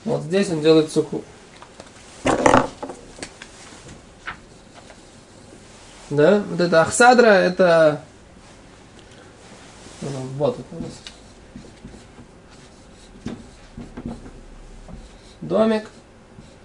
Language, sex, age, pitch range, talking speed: Russian, male, 20-39, 150-205 Hz, 50 wpm